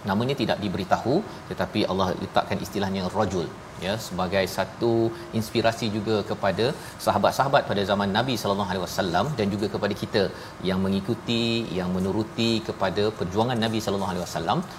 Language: Malayalam